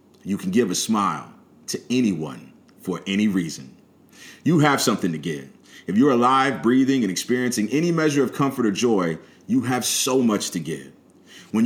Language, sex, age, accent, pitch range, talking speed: English, male, 40-59, American, 105-140 Hz, 175 wpm